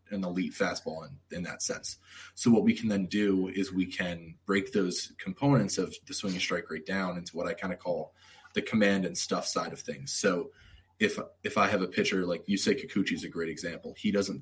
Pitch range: 90-100 Hz